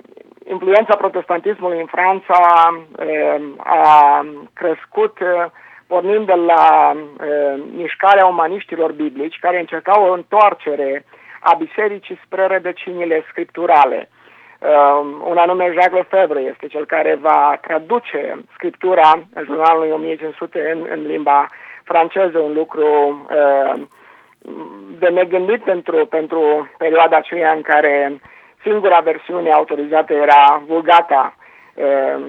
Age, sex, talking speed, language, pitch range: 50-69, male, 105 wpm, Romanian, 150-180 Hz